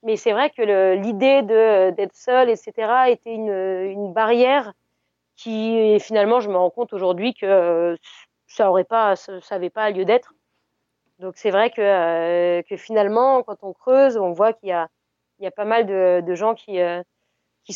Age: 30-49